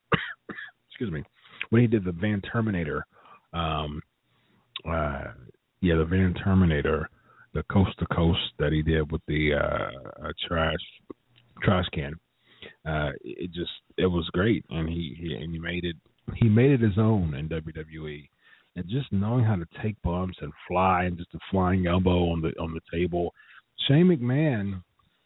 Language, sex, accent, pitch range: English, male, American, 85-125 Hz